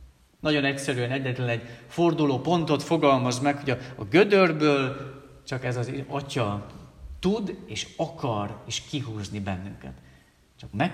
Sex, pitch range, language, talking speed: male, 110-150 Hz, Hungarian, 125 wpm